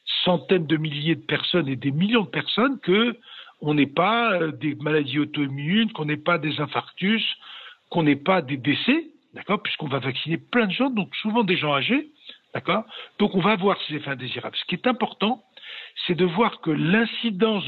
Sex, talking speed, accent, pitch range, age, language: male, 185 wpm, French, 155-215 Hz, 60-79, French